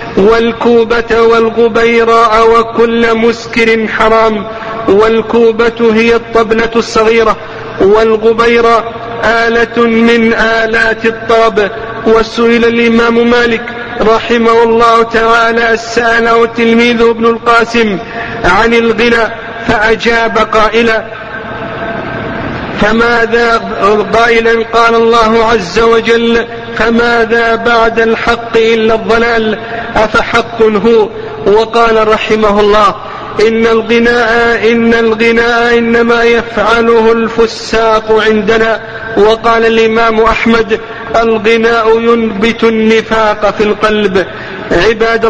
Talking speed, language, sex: 80 wpm, Arabic, male